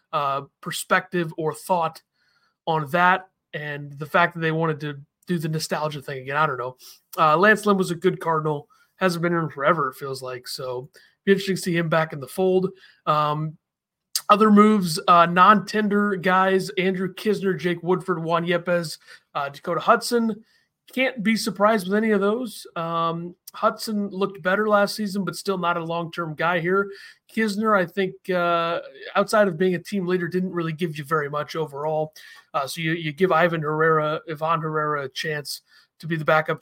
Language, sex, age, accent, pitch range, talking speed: English, male, 30-49, American, 155-190 Hz, 185 wpm